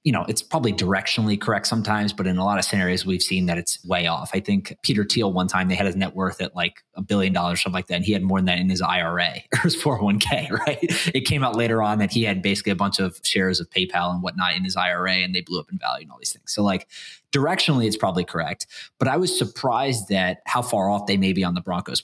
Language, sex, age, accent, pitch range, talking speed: English, male, 20-39, American, 95-125 Hz, 280 wpm